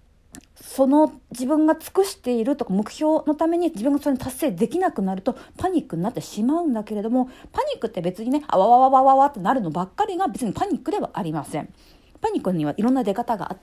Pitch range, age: 195-325 Hz, 50-69